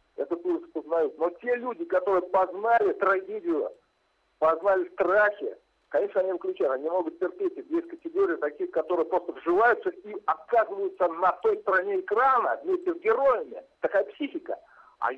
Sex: male